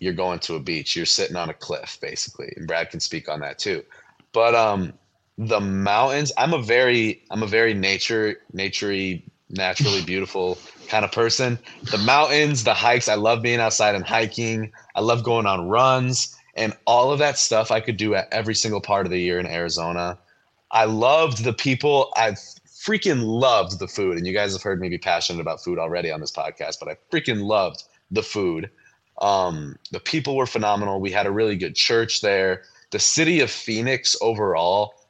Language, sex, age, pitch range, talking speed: English, male, 20-39, 95-130 Hz, 195 wpm